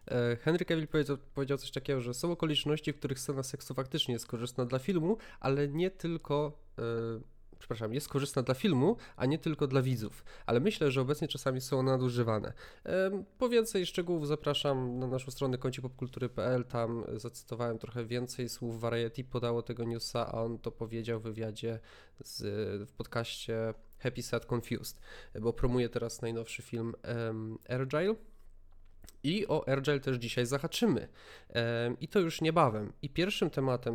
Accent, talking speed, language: native, 160 wpm, Polish